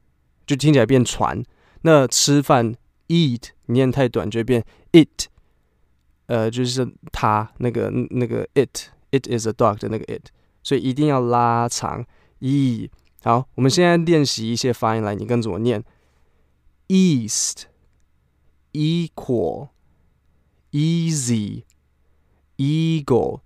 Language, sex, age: Chinese, male, 20-39